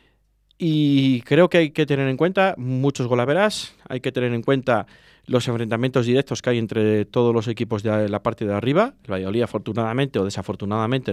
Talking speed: 185 wpm